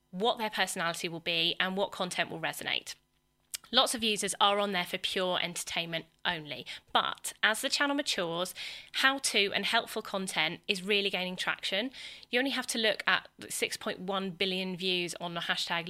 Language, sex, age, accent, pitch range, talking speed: English, female, 20-39, British, 180-245 Hz, 170 wpm